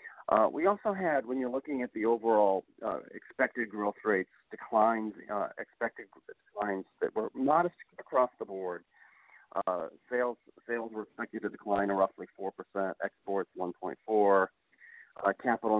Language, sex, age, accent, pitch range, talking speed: English, male, 40-59, American, 100-125 Hz, 140 wpm